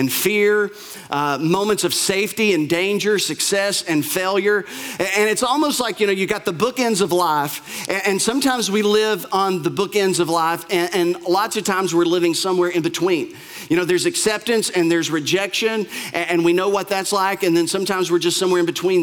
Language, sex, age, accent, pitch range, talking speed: English, male, 40-59, American, 165-205 Hz, 210 wpm